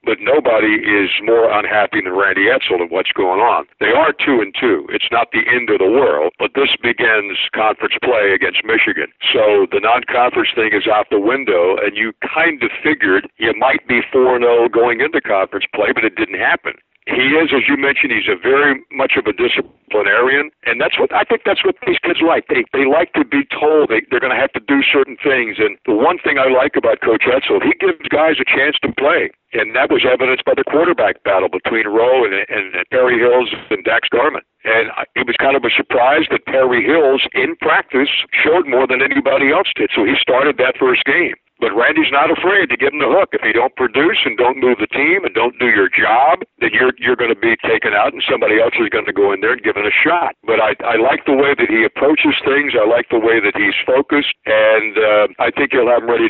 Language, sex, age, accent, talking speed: English, male, 60-79, American, 240 wpm